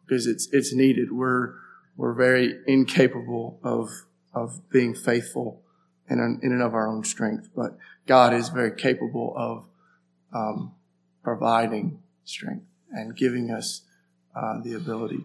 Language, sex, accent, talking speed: English, male, American, 135 wpm